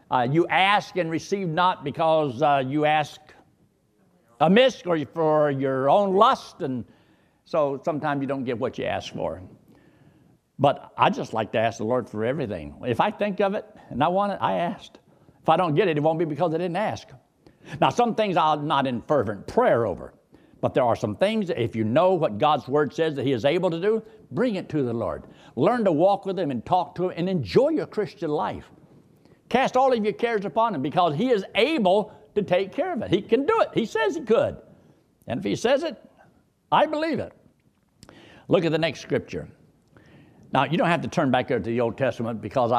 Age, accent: 60-79, American